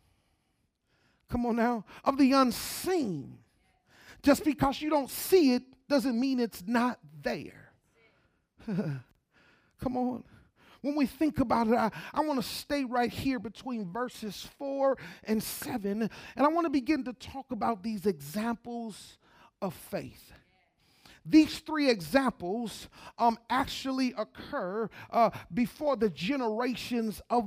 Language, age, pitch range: English, 40-59, 220-275 Hz